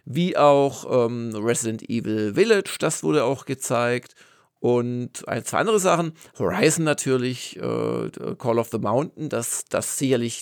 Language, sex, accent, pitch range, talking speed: German, male, German, 120-145 Hz, 145 wpm